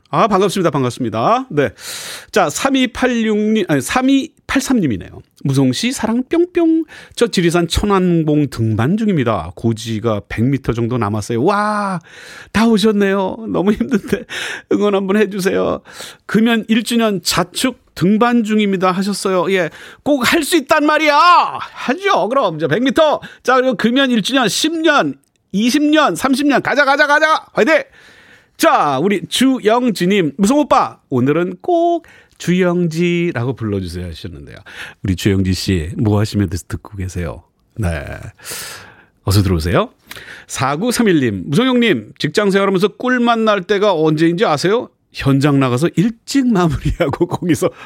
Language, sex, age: Korean, male, 40-59